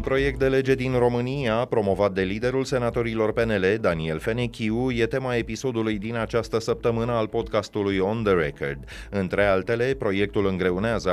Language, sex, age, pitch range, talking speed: Romanian, male, 30-49, 85-115 Hz, 150 wpm